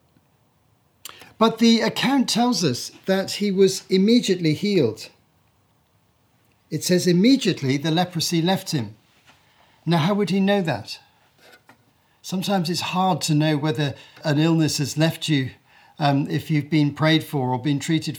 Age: 50-69